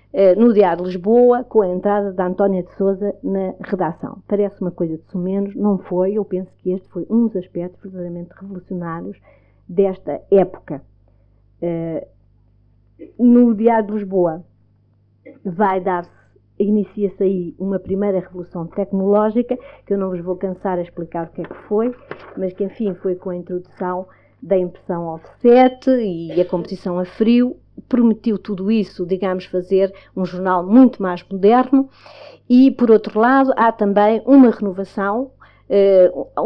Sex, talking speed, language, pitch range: female, 150 wpm, Portuguese, 175-210 Hz